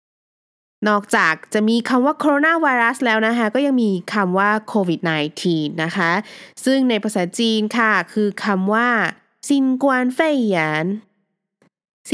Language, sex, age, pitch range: Thai, female, 20-39, 180-265 Hz